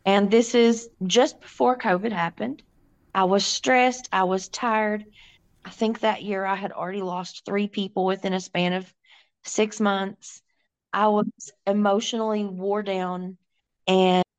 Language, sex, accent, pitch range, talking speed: English, female, American, 195-240 Hz, 145 wpm